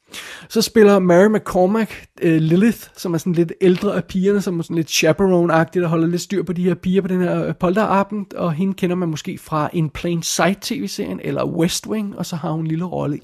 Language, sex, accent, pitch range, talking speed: Danish, male, native, 155-190 Hz, 225 wpm